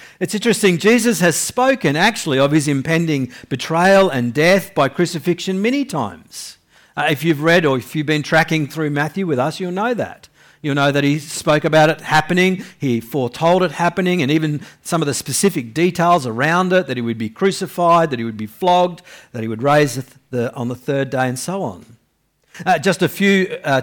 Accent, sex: Australian, male